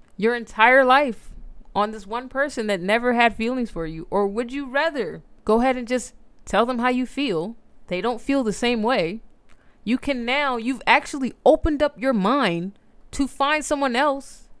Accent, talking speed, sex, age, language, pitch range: American, 185 wpm, female, 20-39, English, 185-250 Hz